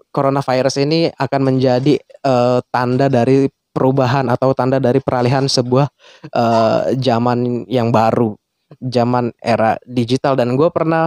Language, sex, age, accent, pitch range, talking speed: Indonesian, male, 20-39, native, 125-150 Hz, 125 wpm